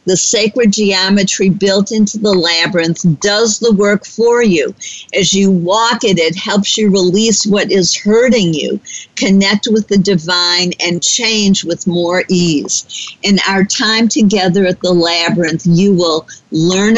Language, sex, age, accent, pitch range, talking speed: English, female, 50-69, American, 175-215 Hz, 150 wpm